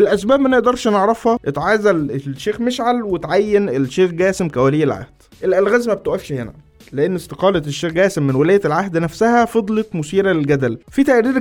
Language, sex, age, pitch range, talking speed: Arabic, male, 20-39, 150-215 Hz, 145 wpm